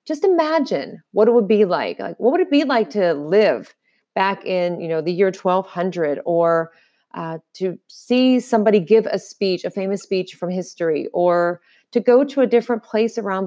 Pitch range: 175-220 Hz